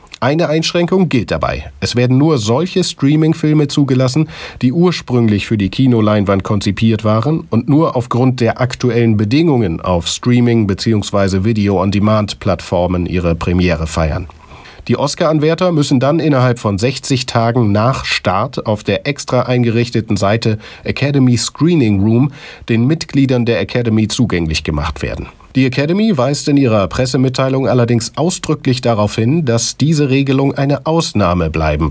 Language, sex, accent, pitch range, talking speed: German, male, German, 100-135 Hz, 135 wpm